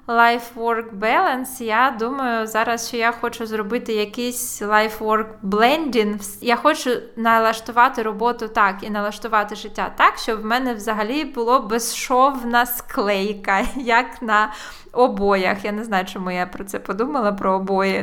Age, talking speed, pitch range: 20-39, 145 wpm, 215-245 Hz